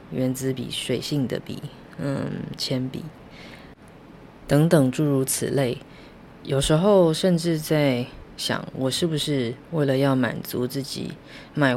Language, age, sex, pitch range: Chinese, 20-39, female, 130-160 Hz